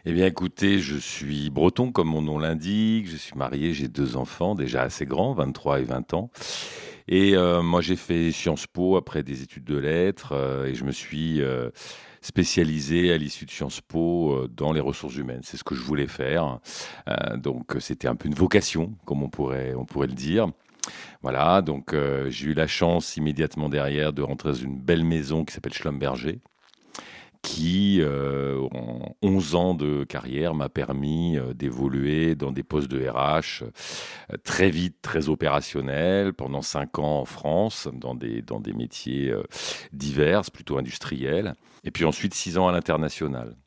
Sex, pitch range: male, 70-85 Hz